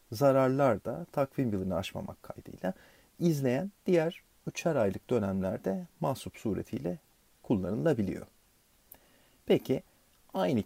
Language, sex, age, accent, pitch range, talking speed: Turkish, male, 40-59, native, 95-140 Hz, 90 wpm